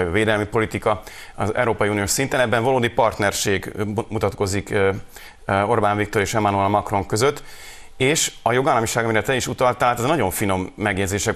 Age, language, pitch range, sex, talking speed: 30-49, Hungarian, 100-115 Hz, male, 145 wpm